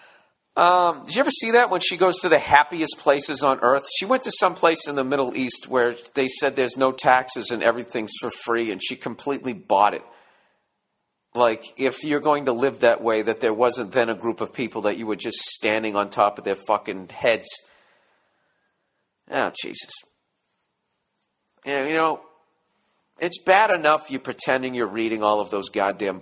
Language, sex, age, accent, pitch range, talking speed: English, male, 50-69, American, 110-150 Hz, 190 wpm